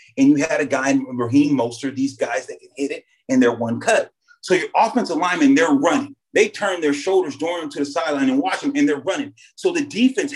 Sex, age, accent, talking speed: male, 30-49, American, 240 wpm